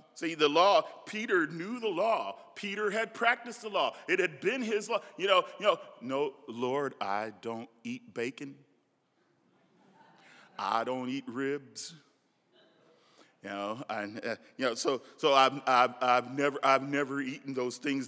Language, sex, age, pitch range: English, male, 40-59, 140-235 Hz